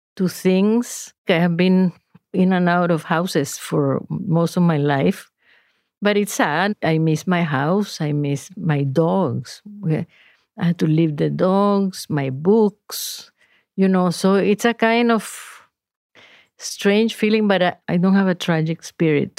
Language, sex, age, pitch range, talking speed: English, female, 50-69, 155-190 Hz, 160 wpm